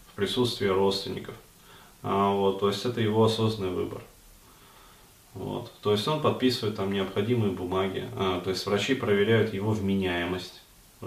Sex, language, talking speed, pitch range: male, Russian, 145 wpm, 95-120 Hz